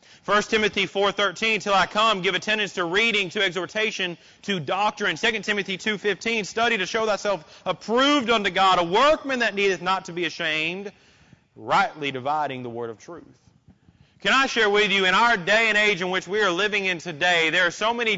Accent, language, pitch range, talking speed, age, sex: American, English, 195-255 Hz, 200 wpm, 30-49, male